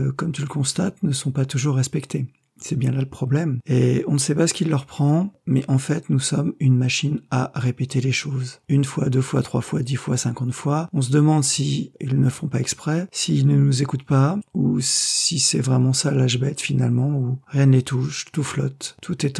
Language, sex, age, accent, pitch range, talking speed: French, male, 40-59, French, 130-155 Hz, 235 wpm